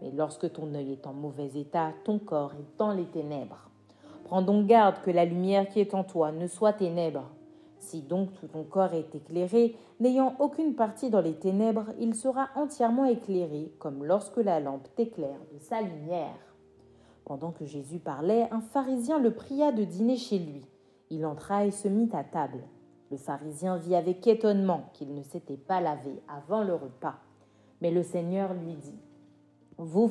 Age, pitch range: 40-59, 165-230 Hz